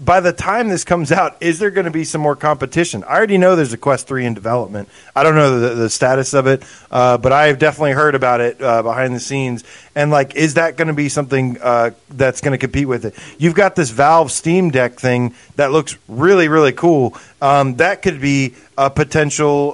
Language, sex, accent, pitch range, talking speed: English, male, American, 130-165 Hz, 230 wpm